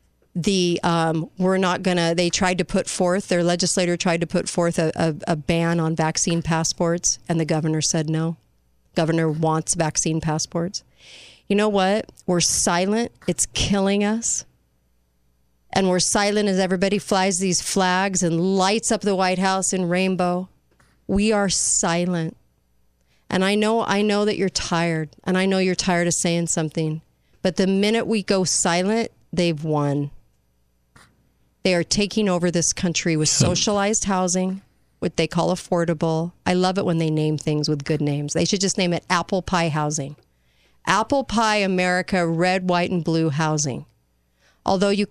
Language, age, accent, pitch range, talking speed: English, 40-59, American, 160-195 Hz, 165 wpm